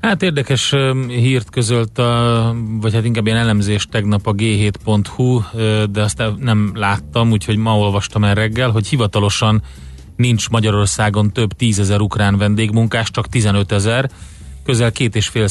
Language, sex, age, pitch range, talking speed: Hungarian, male, 30-49, 100-115 Hz, 145 wpm